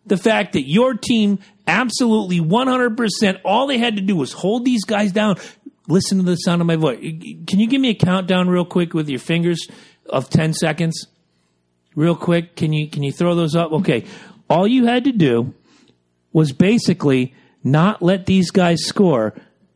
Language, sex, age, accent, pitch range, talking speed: English, male, 40-59, American, 130-185 Hz, 180 wpm